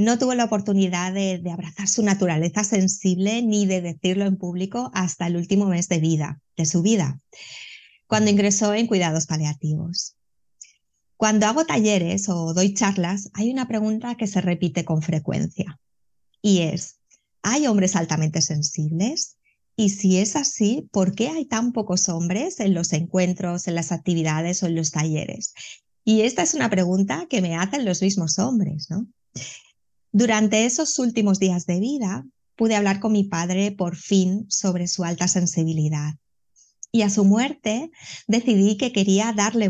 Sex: female